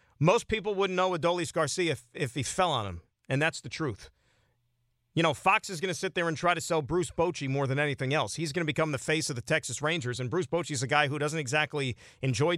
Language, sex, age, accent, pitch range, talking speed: English, male, 40-59, American, 125-185 Hz, 260 wpm